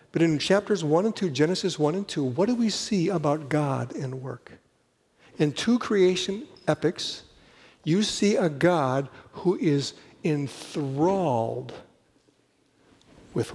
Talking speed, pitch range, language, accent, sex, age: 135 wpm, 145-190 Hz, English, American, male, 60-79